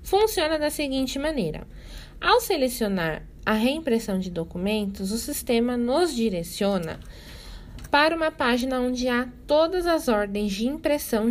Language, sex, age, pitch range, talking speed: Portuguese, female, 20-39, 220-285 Hz, 125 wpm